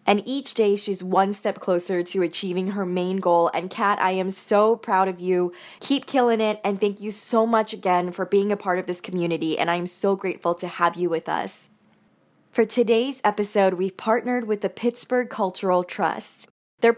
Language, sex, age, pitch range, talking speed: English, female, 10-29, 185-220 Hz, 200 wpm